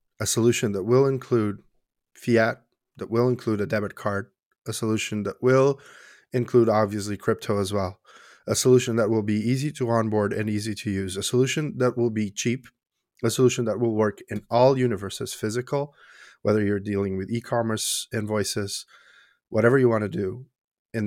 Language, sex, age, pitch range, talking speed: English, male, 30-49, 105-130 Hz, 170 wpm